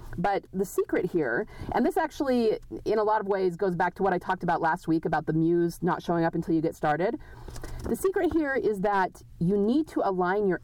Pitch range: 165-215 Hz